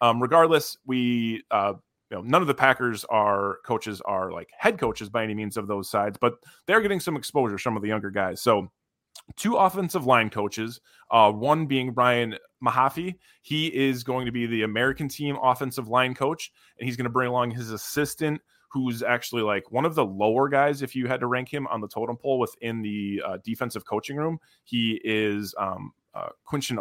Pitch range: 110-140 Hz